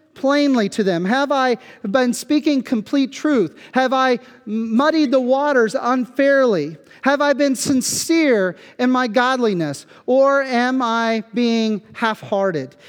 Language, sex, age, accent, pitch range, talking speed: English, male, 40-59, American, 215-275 Hz, 125 wpm